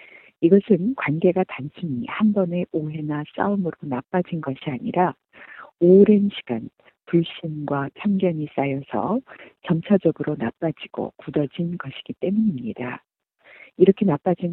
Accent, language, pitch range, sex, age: native, Korean, 150-205 Hz, female, 50-69